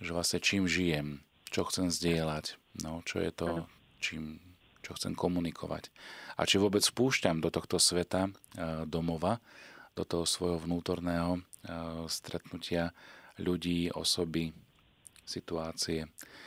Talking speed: 115 wpm